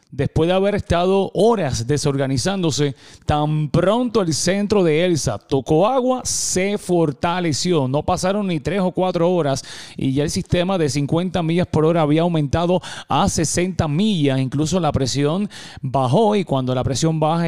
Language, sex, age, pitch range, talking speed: English, male, 30-49, 140-175 Hz, 160 wpm